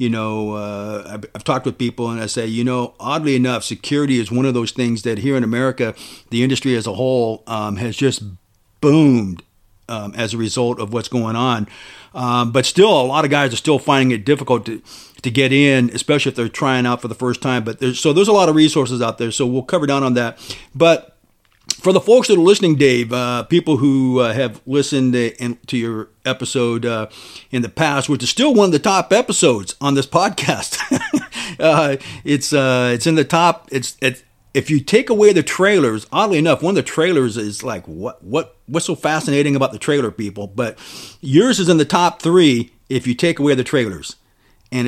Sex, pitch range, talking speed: male, 115-145 Hz, 215 wpm